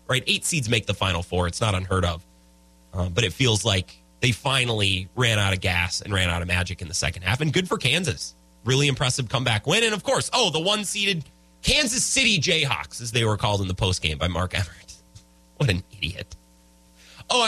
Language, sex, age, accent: English, male, 30-49, American